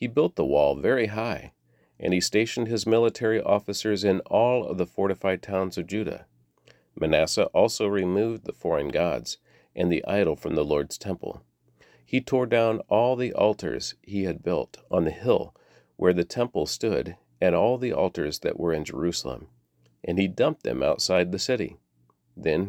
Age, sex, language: 40-59, male, English